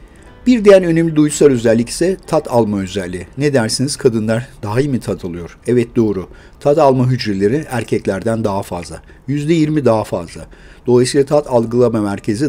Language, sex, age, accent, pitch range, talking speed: Turkish, male, 60-79, native, 100-140 Hz, 160 wpm